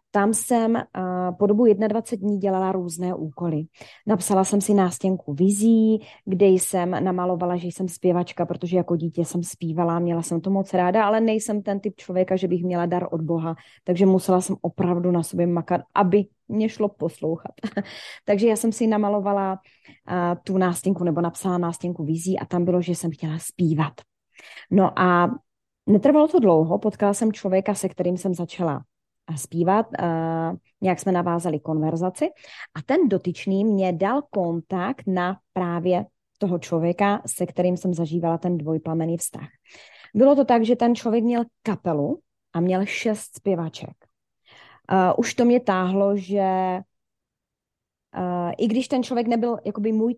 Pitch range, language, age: 175-205 Hz, Czech, 20-39